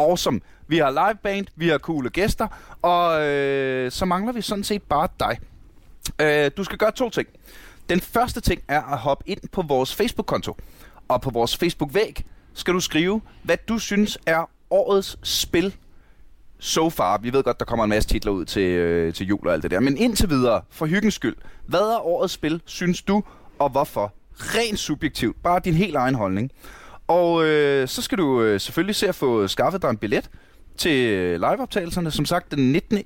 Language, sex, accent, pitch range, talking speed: Danish, male, native, 135-180 Hz, 195 wpm